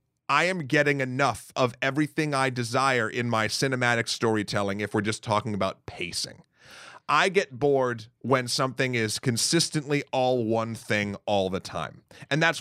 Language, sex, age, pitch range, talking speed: English, male, 30-49, 125-165 Hz, 155 wpm